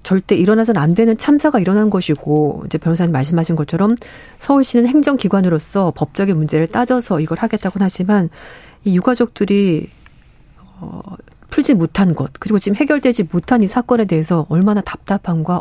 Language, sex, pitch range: Korean, female, 165-230 Hz